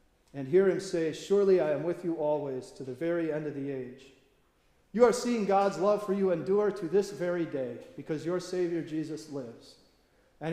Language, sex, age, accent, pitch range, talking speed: English, male, 40-59, American, 135-175 Hz, 200 wpm